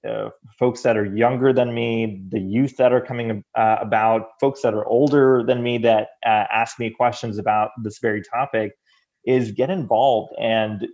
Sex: male